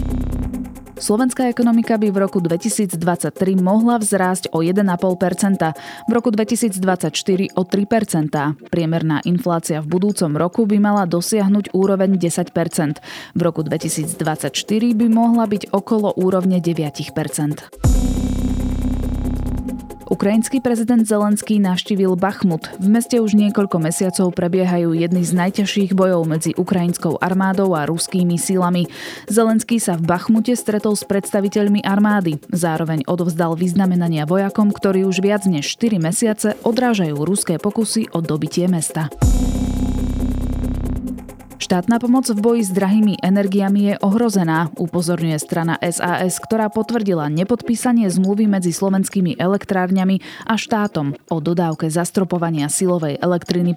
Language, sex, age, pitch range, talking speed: Slovak, female, 20-39, 165-205 Hz, 115 wpm